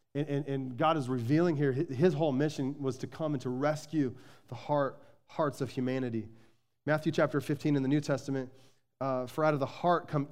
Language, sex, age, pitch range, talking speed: English, male, 30-49, 140-175 Hz, 205 wpm